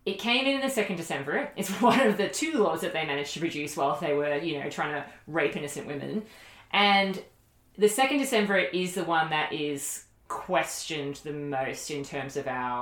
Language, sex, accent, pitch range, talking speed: English, female, Australian, 140-175 Hz, 200 wpm